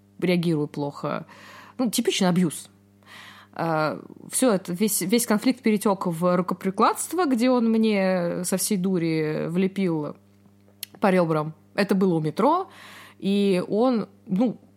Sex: female